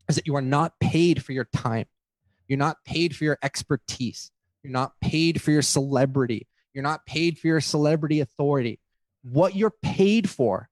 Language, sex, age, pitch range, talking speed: English, male, 30-49, 135-195 Hz, 180 wpm